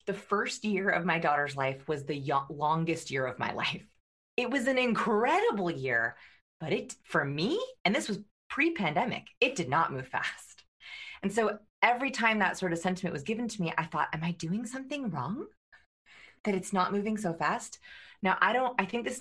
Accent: American